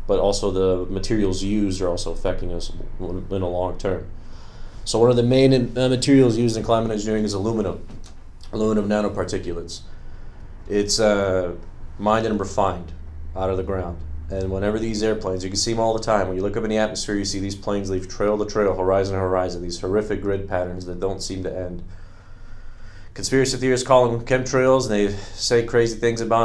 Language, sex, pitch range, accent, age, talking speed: English, male, 90-105 Hz, American, 30-49, 195 wpm